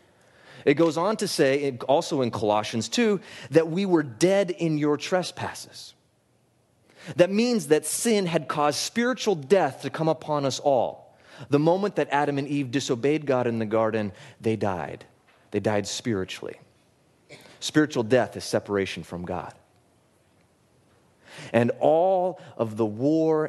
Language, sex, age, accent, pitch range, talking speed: English, male, 30-49, American, 105-155 Hz, 145 wpm